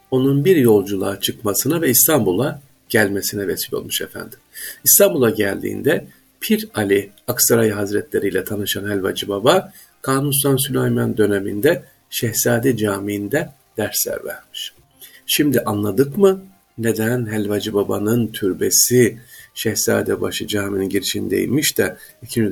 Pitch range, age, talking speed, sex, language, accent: 100-140 Hz, 50-69, 110 wpm, male, Turkish, native